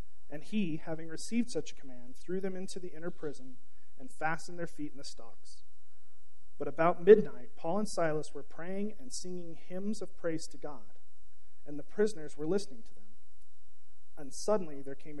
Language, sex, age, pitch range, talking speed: English, male, 30-49, 140-185 Hz, 180 wpm